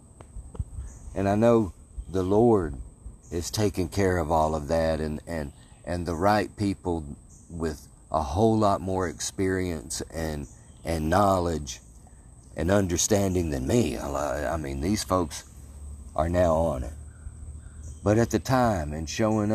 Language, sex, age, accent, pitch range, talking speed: English, male, 50-69, American, 75-105 Hz, 140 wpm